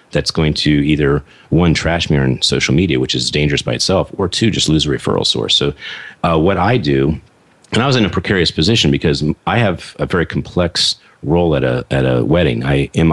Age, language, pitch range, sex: 40-59, English, 70-85 Hz, male